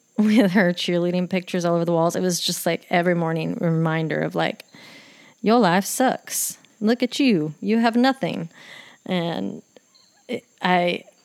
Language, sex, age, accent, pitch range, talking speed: English, female, 30-49, American, 165-210 Hz, 150 wpm